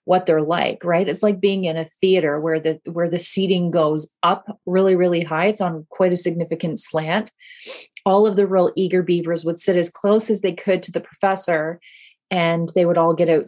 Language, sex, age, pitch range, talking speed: English, female, 30-49, 170-210 Hz, 215 wpm